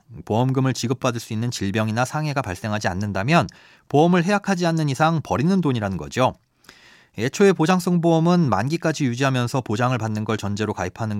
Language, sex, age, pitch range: Korean, male, 40-59, 110-160 Hz